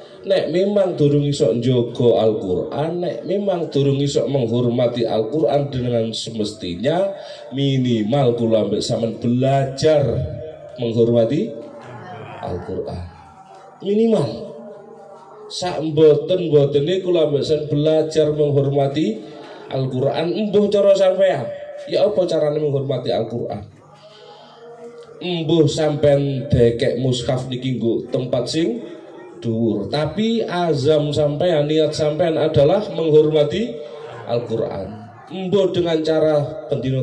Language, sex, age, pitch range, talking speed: Indonesian, male, 30-49, 125-180 Hz, 90 wpm